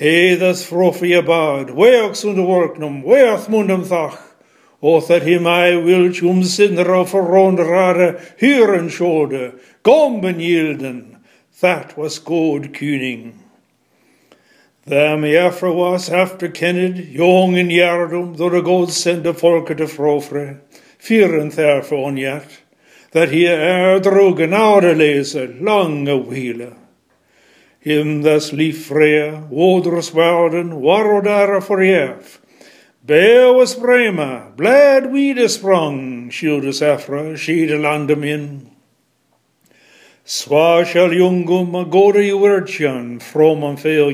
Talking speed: 115 wpm